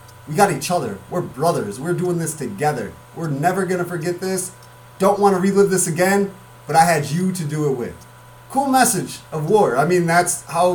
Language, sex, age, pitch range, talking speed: English, male, 30-49, 155-205 Hz, 210 wpm